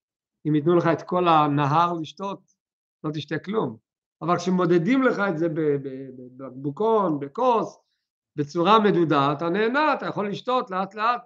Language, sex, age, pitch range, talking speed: Hebrew, male, 50-69, 160-240 Hz, 140 wpm